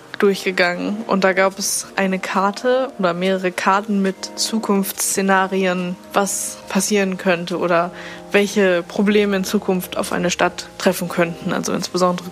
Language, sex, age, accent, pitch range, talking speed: German, female, 20-39, German, 195-220 Hz, 130 wpm